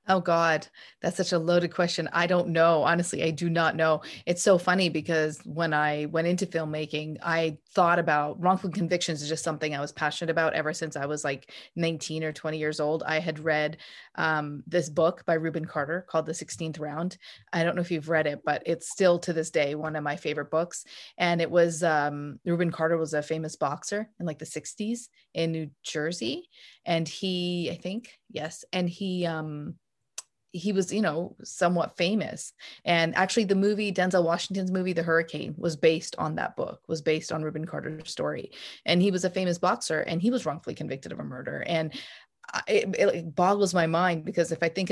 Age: 30-49